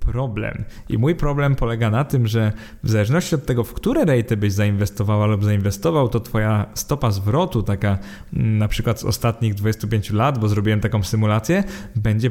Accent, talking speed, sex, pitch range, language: native, 170 wpm, male, 110-130 Hz, Polish